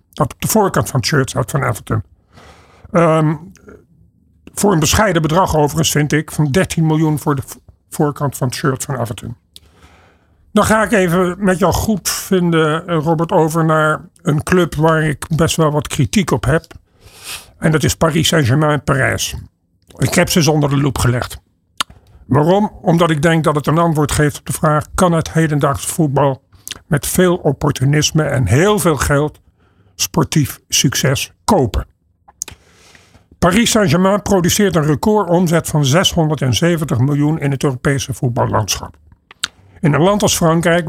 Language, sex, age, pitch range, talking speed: Dutch, male, 50-69, 130-170 Hz, 155 wpm